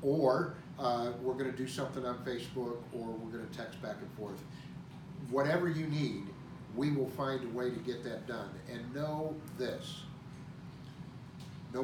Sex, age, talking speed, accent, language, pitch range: male, 50-69, 165 wpm, American, English, 130-160 Hz